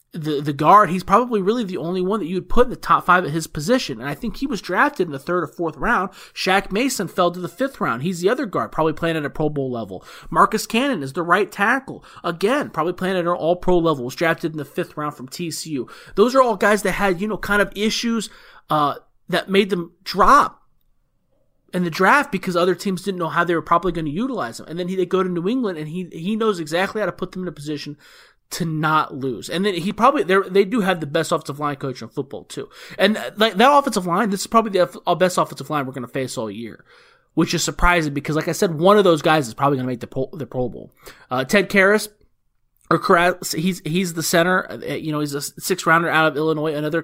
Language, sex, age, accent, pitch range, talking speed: English, male, 30-49, American, 155-200 Hz, 260 wpm